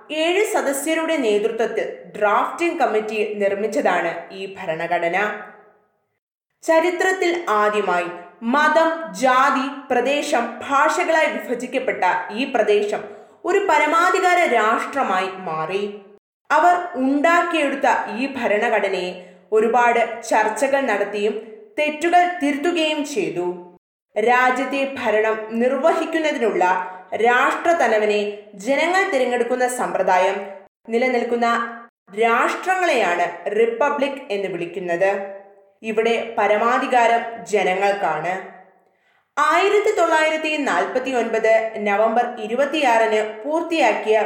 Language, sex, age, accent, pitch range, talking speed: Malayalam, female, 20-39, native, 210-295 Hz, 65 wpm